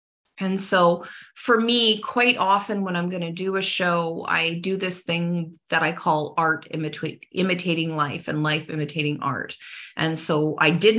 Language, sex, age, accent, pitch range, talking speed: English, female, 30-49, American, 160-195 Hz, 175 wpm